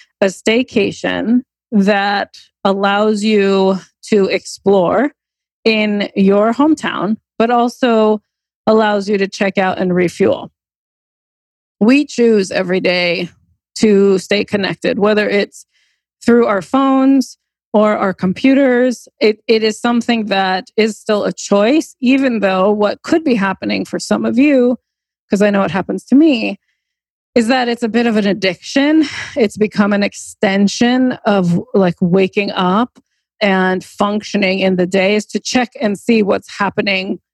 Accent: American